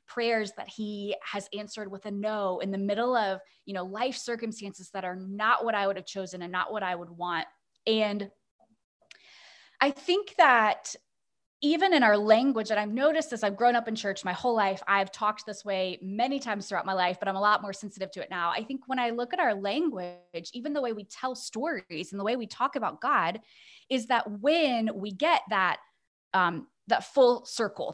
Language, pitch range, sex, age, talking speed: English, 195-260 Hz, female, 20-39, 215 wpm